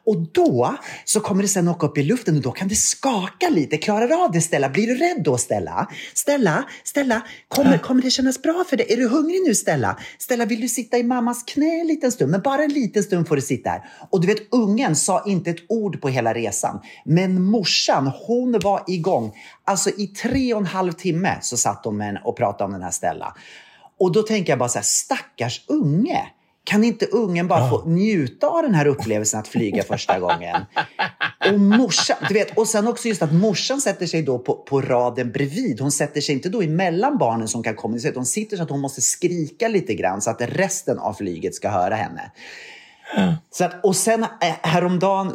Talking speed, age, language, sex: 215 wpm, 30-49, Swedish, male